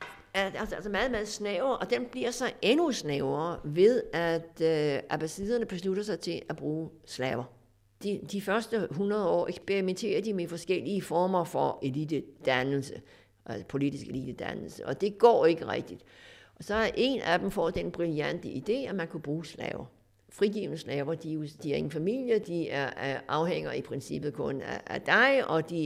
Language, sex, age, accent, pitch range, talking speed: Danish, female, 60-79, native, 140-200 Hz, 170 wpm